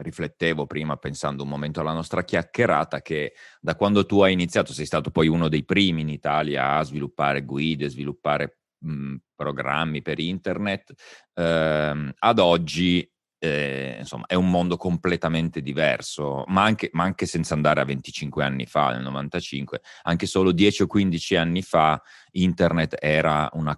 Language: Italian